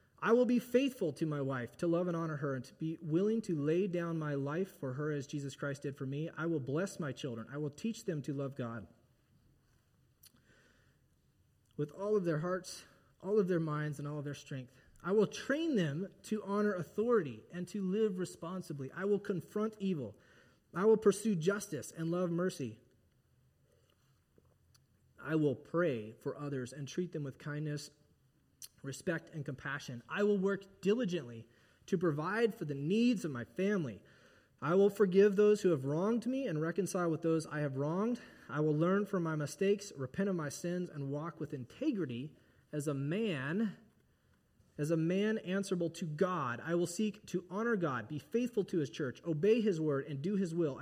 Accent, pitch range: American, 145-195 Hz